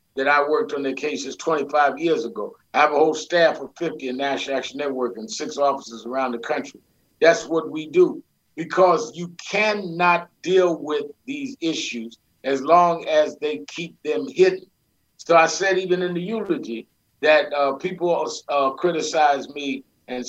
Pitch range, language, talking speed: 140-190 Hz, English, 170 wpm